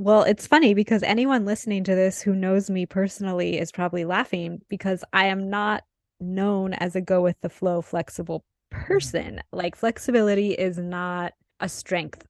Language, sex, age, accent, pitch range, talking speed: English, female, 20-39, American, 175-200 Hz, 150 wpm